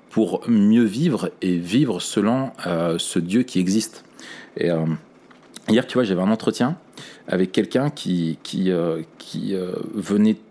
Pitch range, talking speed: 90-110 Hz, 155 wpm